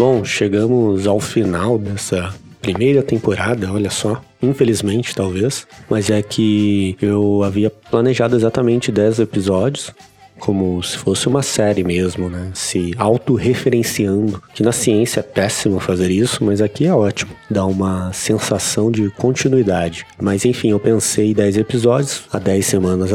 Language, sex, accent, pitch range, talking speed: Portuguese, male, Brazilian, 100-125 Hz, 140 wpm